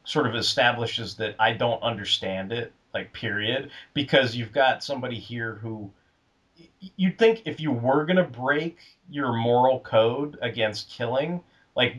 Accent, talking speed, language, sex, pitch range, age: American, 150 wpm, English, male, 115-145 Hz, 30-49